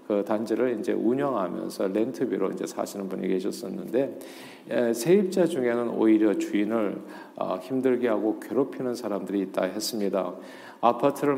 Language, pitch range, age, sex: Korean, 105-135 Hz, 50-69, male